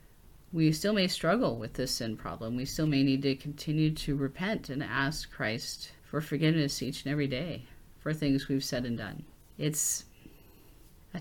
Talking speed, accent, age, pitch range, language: 175 wpm, American, 40-59, 130-155 Hz, English